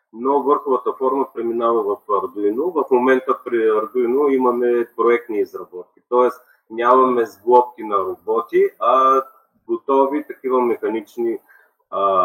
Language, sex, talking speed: Bulgarian, male, 115 wpm